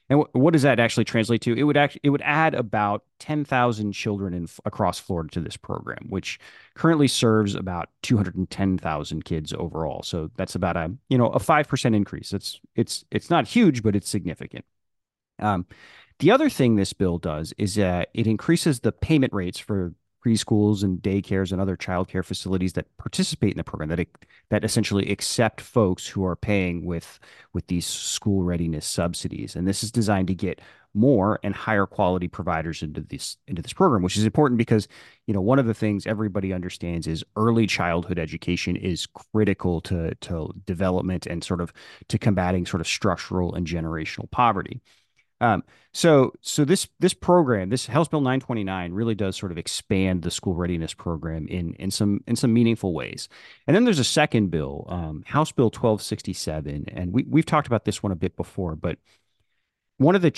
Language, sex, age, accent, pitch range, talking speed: English, male, 30-49, American, 90-115 Hz, 190 wpm